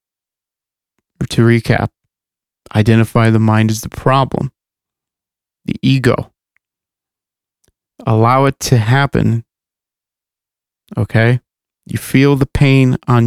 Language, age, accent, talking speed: English, 30-49, American, 90 wpm